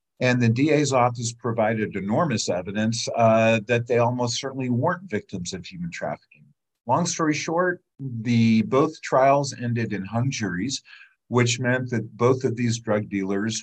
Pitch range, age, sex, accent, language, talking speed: 110-155 Hz, 50-69, male, American, English, 155 wpm